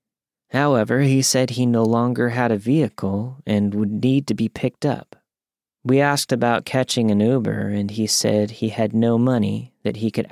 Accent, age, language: American, 30-49, English